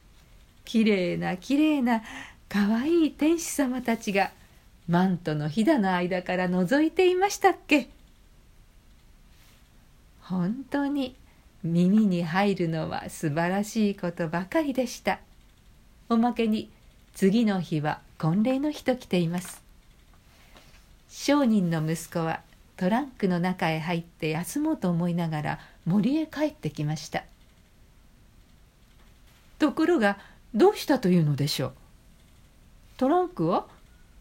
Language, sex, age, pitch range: Japanese, female, 50-69, 160-250 Hz